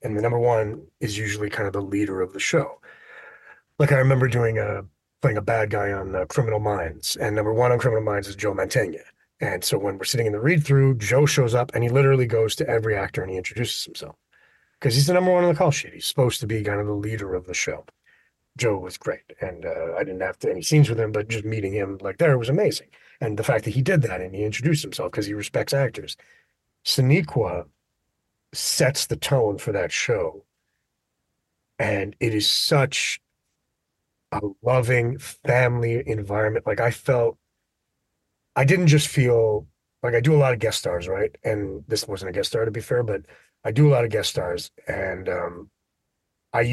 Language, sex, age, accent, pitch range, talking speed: English, male, 30-49, American, 105-150 Hz, 210 wpm